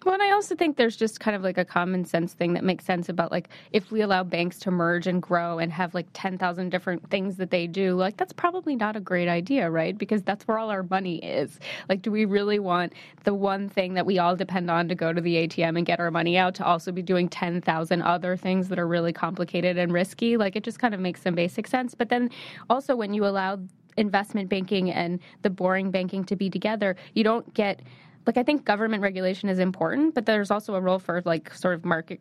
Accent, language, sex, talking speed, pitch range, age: American, English, female, 245 wpm, 175-215 Hz, 20-39